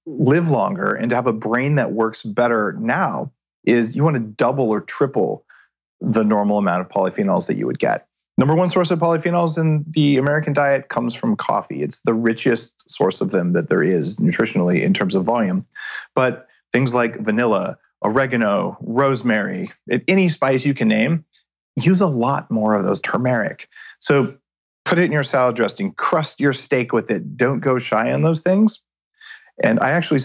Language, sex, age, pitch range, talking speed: English, male, 40-59, 115-175 Hz, 185 wpm